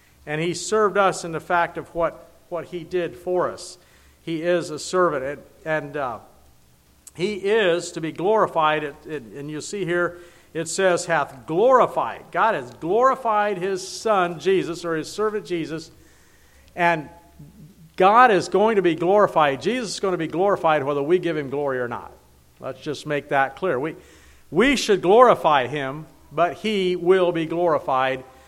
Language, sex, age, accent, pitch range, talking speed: English, male, 50-69, American, 145-185 Hz, 170 wpm